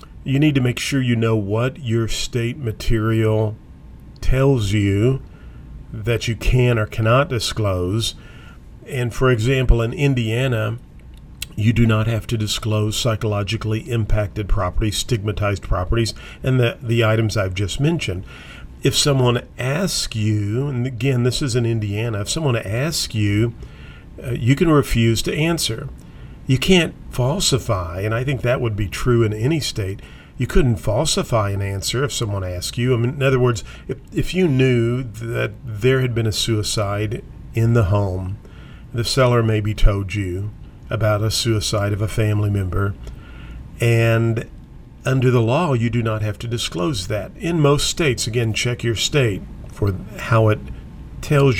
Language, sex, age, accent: English, male, 50-69, American